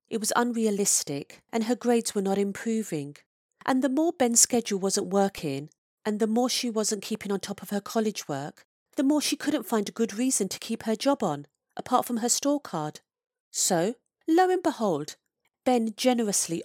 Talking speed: 185 wpm